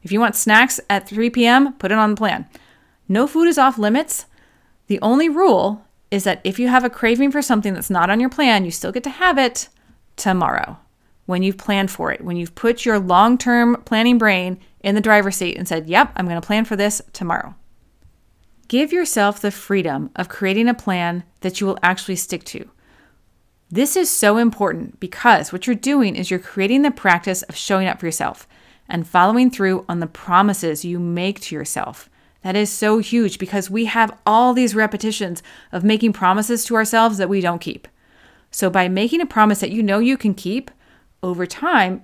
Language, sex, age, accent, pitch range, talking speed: English, female, 30-49, American, 190-240 Hz, 200 wpm